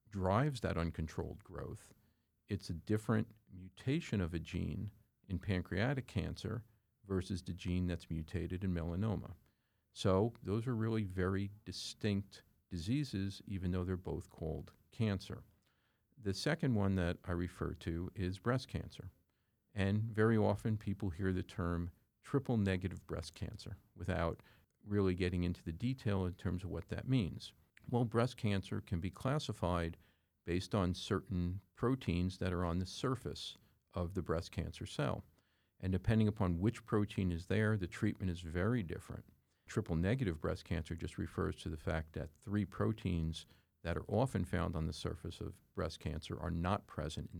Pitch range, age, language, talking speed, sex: 90-105 Hz, 50-69, English, 160 wpm, male